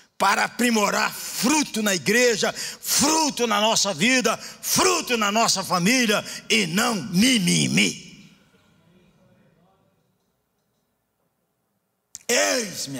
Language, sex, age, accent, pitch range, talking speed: Portuguese, male, 60-79, Brazilian, 225-305 Hz, 80 wpm